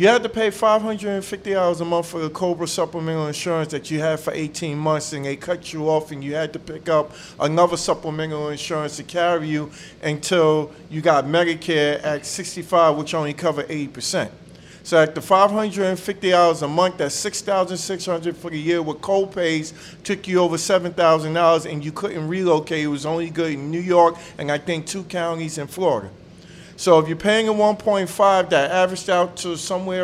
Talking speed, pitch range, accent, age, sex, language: 180 wpm, 160-195 Hz, American, 40-59, male, English